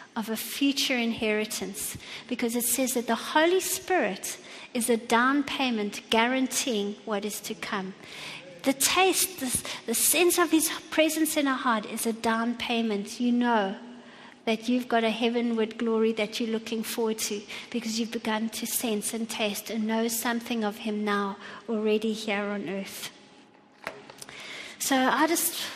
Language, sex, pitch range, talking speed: English, female, 230-300 Hz, 160 wpm